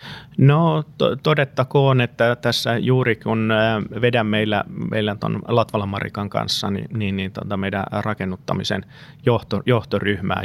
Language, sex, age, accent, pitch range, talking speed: Finnish, male, 30-49, native, 100-115 Hz, 120 wpm